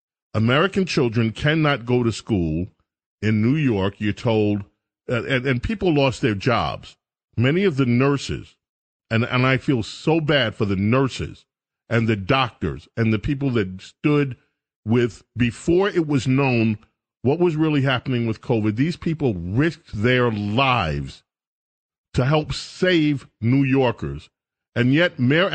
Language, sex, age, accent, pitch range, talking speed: English, male, 40-59, American, 115-150 Hz, 150 wpm